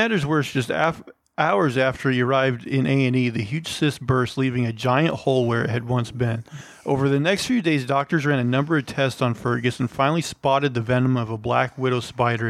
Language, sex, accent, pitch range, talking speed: English, male, American, 125-155 Hz, 220 wpm